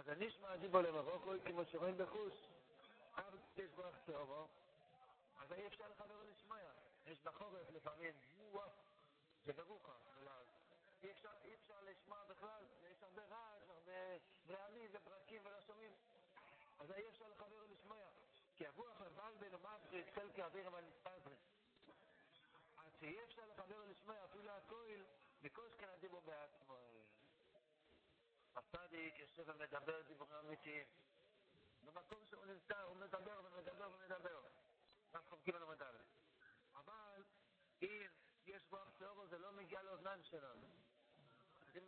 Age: 50-69